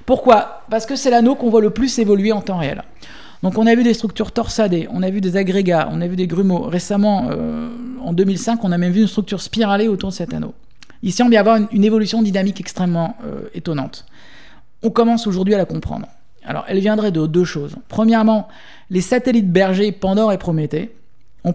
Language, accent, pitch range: French, French, 185-230 Hz